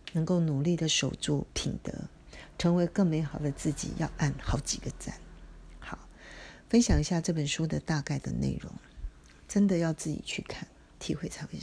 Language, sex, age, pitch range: Chinese, female, 40-59, 150-190 Hz